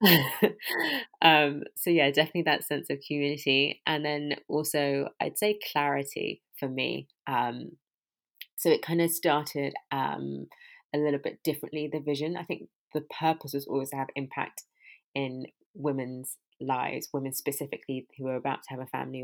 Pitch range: 135-160 Hz